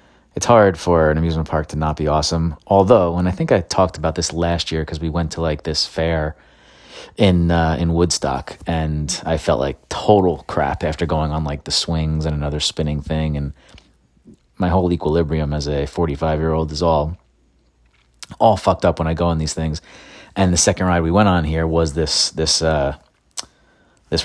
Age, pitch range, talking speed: 30-49, 80-95 Hz, 200 wpm